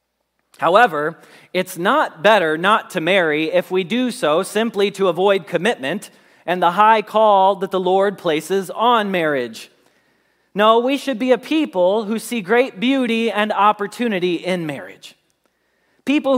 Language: English